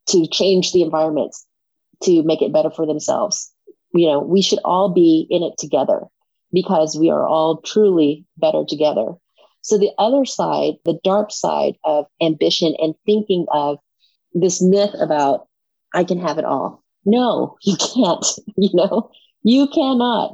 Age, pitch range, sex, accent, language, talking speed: 40-59, 160-210 Hz, female, American, English, 155 wpm